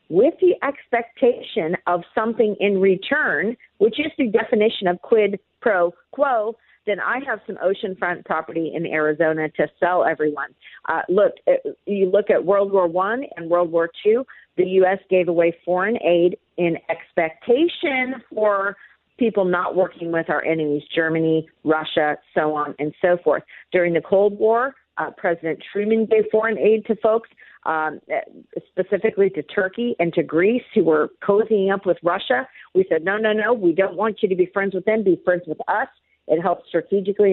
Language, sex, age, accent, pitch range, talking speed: English, female, 50-69, American, 170-225 Hz, 170 wpm